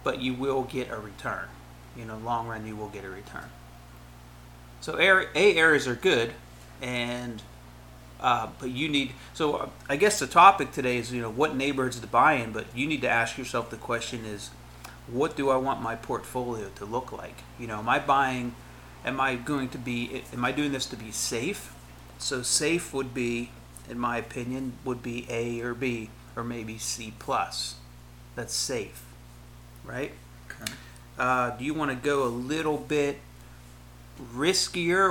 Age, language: 30-49, English